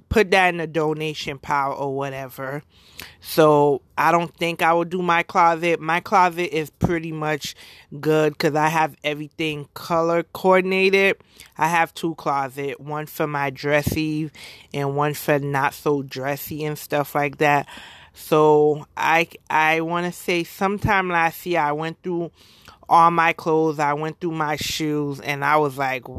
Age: 30-49